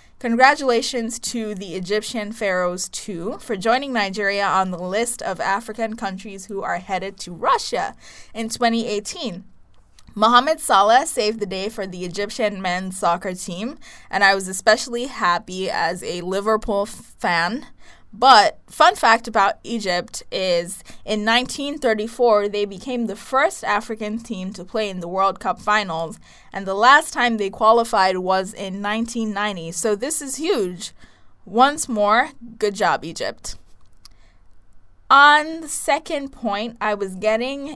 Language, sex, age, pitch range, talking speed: English, female, 20-39, 185-230 Hz, 140 wpm